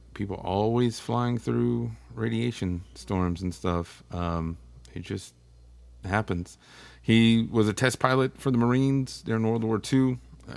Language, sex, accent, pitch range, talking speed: English, male, American, 85-120 Hz, 135 wpm